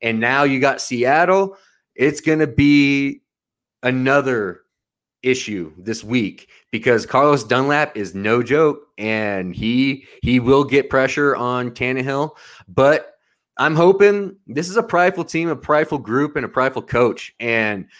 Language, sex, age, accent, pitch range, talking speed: English, male, 20-39, American, 115-145 Hz, 140 wpm